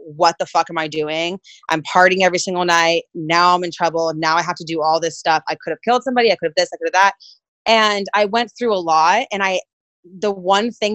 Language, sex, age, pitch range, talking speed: English, female, 20-39, 170-215 Hz, 260 wpm